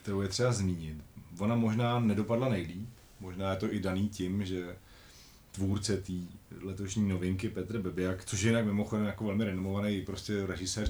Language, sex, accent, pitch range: Czech, male, native, 90-105 Hz